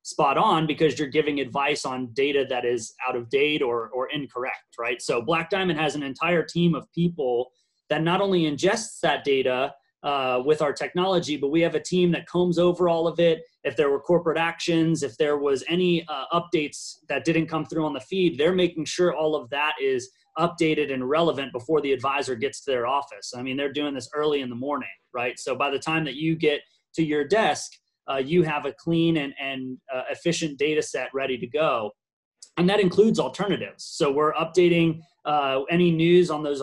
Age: 30-49